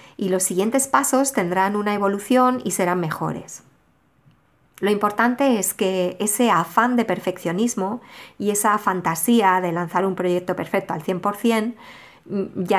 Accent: Spanish